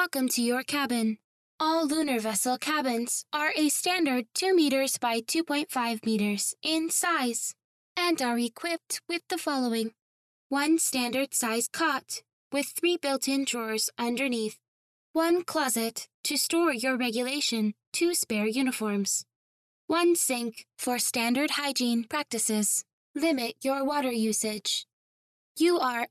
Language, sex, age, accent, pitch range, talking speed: English, female, 10-29, American, 235-315 Hz, 125 wpm